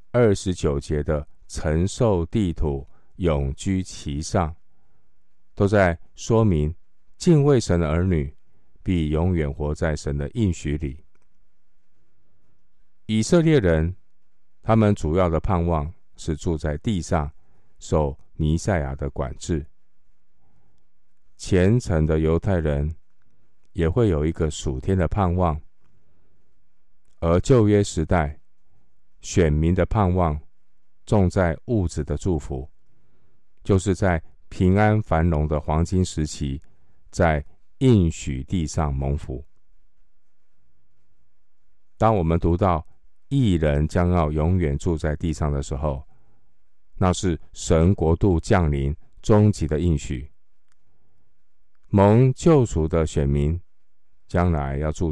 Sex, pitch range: male, 75-95 Hz